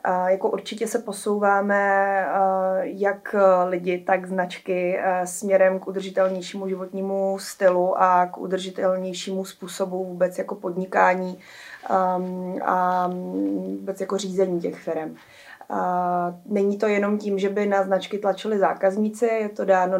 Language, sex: Czech, female